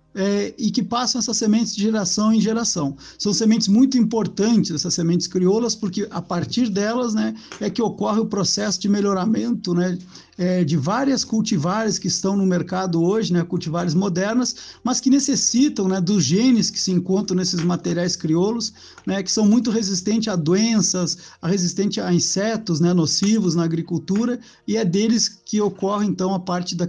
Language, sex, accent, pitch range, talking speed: Portuguese, male, Brazilian, 180-215 Hz, 175 wpm